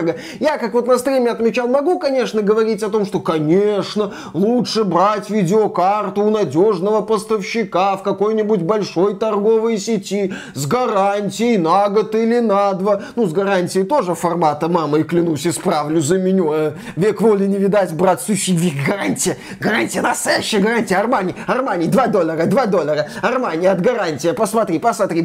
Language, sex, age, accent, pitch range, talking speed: Russian, male, 20-39, native, 190-240 Hz, 150 wpm